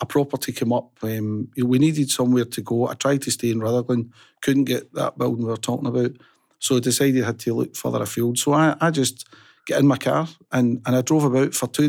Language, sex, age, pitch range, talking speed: English, male, 40-59, 115-135 Hz, 240 wpm